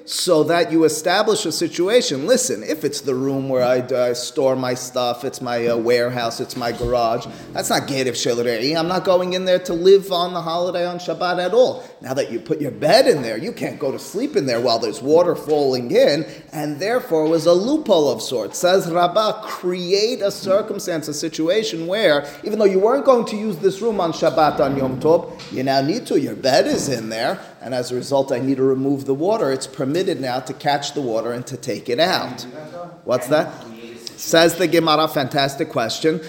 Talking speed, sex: 215 wpm, male